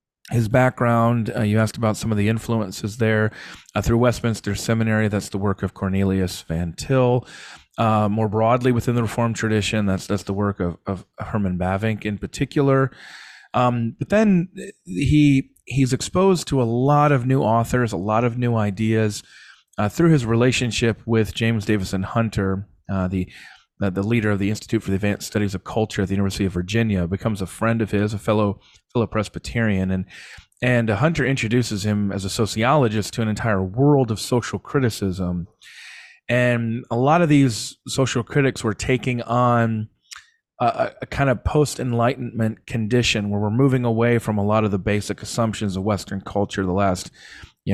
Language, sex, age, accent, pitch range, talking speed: English, male, 30-49, American, 100-120 Hz, 175 wpm